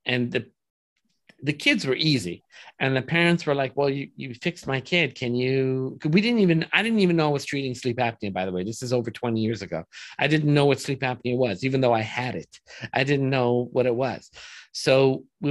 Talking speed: 230 wpm